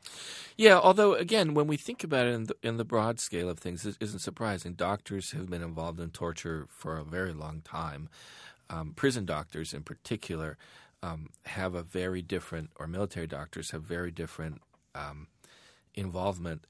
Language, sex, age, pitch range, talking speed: English, male, 40-59, 80-100 Hz, 170 wpm